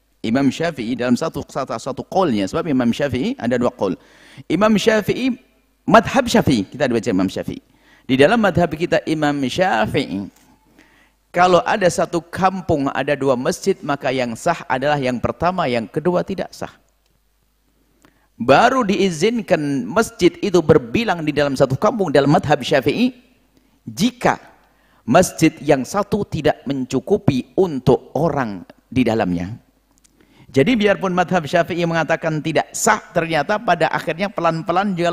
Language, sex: Indonesian, male